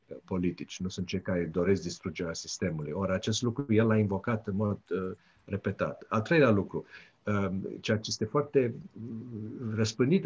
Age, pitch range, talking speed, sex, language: 50-69, 90-110 Hz, 165 wpm, male, Romanian